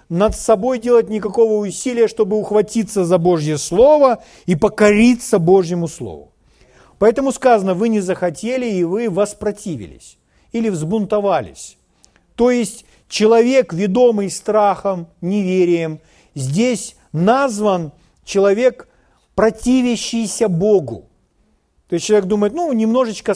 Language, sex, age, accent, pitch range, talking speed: Russian, male, 50-69, native, 180-230 Hz, 105 wpm